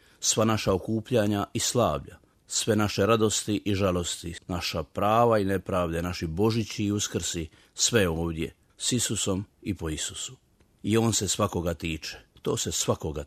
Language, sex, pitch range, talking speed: Croatian, male, 85-105 Hz, 150 wpm